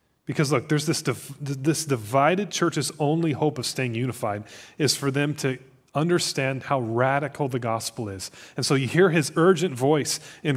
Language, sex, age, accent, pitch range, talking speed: English, male, 30-49, American, 135-195 Hz, 175 wpm